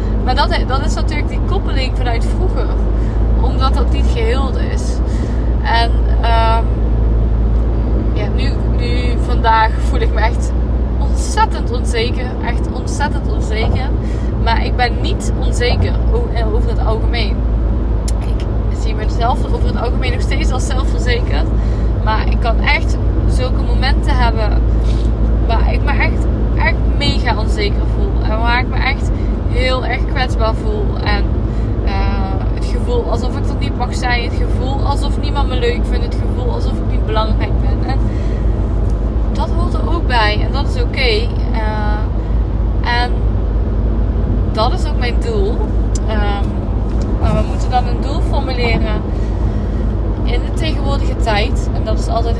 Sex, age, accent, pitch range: female, 20-39, Dutch, 100-110 Hz